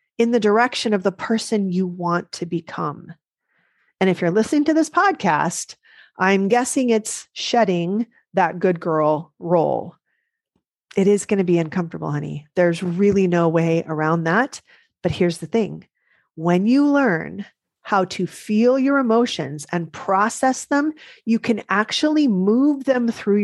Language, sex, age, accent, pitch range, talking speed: English, female, 40-59, American, 180-240 Hz, 150 wpm